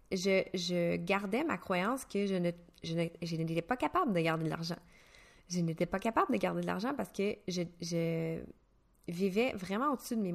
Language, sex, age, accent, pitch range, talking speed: French, female, 20-39, Canadian, 170-220 Hz, 205 wpm